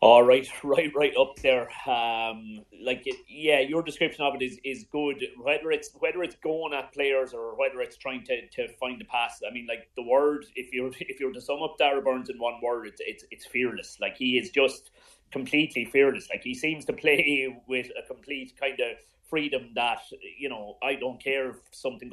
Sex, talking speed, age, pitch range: male, 215 wpm, 30-49, 120-160 Hz